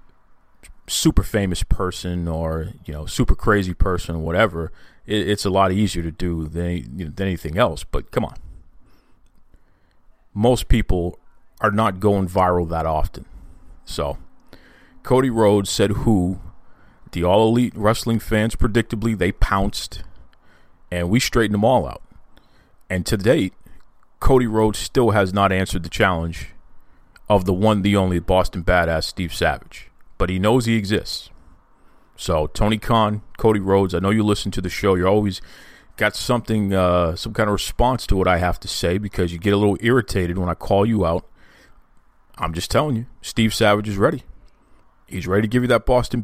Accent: American